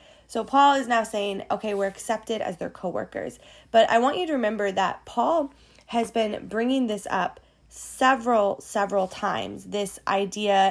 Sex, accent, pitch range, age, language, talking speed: female, American, 190-225 Hz, 20-39, English, 170 wpm